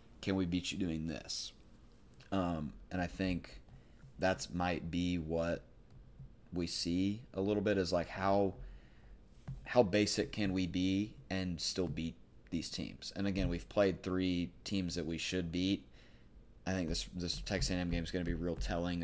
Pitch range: 85-95 Hz